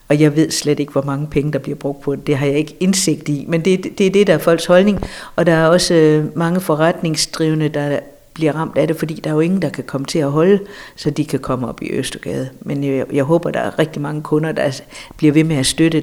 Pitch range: 140-170 Hz